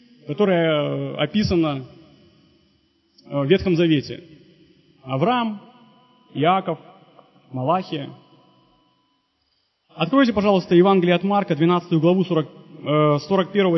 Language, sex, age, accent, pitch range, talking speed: Russian, male, 30-49, native, 155-195 Hz, 70 wpm